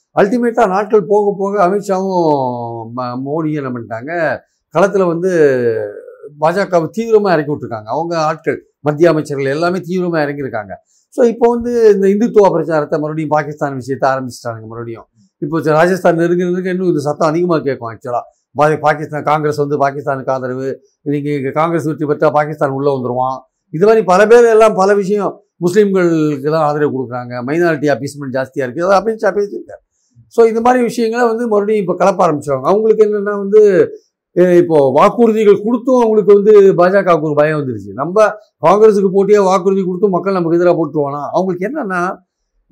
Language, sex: Tamil, male